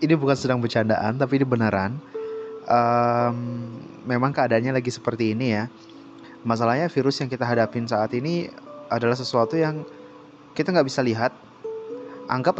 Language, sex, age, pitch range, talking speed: Indonesian, male, 20-39, 110-145 Hz, 140 wpm